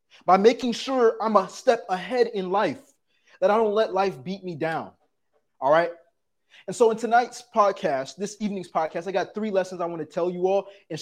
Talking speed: 205 wpm